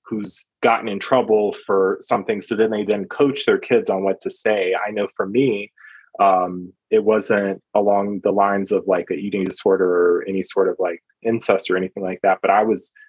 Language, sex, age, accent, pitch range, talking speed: English, male, 20-39, American, 95-115 Hz, 205 wpm